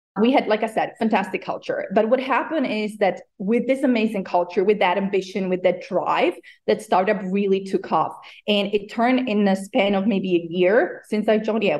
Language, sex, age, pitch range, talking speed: English, female, 20-39, 185-225 Hz, 215 wpm